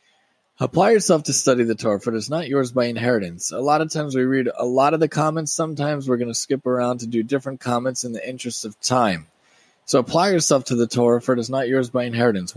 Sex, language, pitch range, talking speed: male, English, 125-155 Hz, 250 wpm